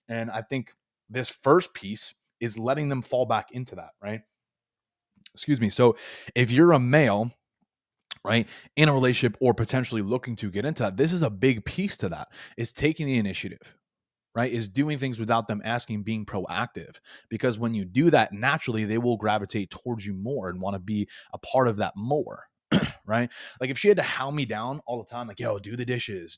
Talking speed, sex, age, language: 205 wpm, male, 20-39, English